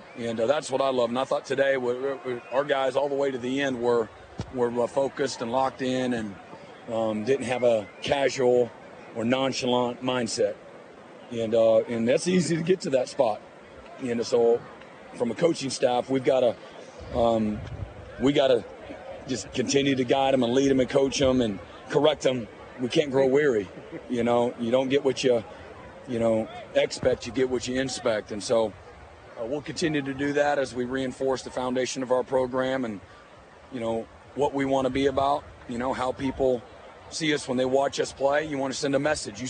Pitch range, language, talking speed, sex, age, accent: 125-140 Hz, English, 205 wpm, male, 40-59, American